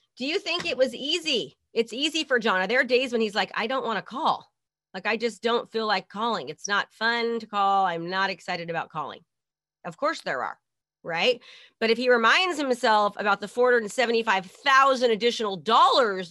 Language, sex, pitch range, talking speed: English, female, 195-255 Hz, 195 wpm